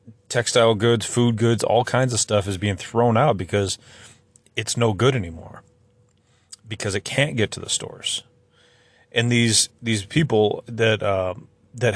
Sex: male